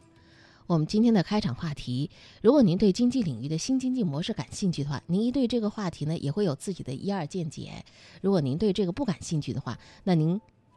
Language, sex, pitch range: Chinese, female, 130-205 Hz